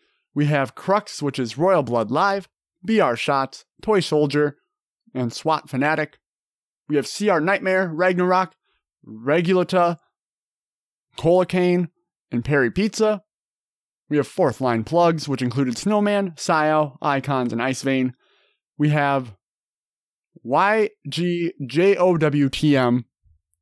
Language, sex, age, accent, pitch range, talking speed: English, male, 30-49, American, 140-200 Hz, 105 wpm